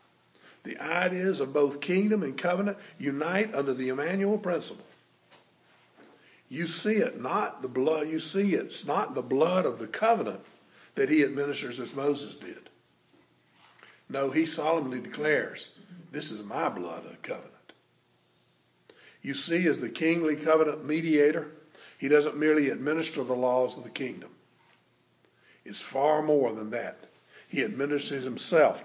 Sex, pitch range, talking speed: male, 130-155 Hz, 130 wpm